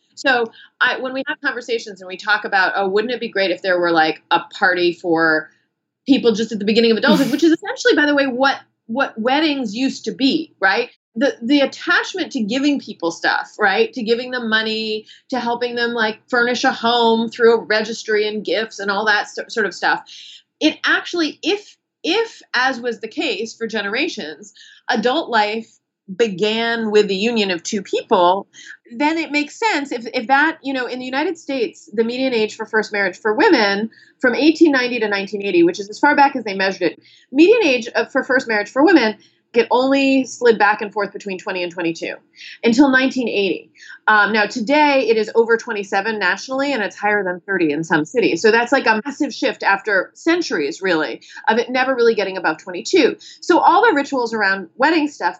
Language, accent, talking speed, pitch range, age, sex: English, American, 200 wpm, 205-275 Hz, 30-49, female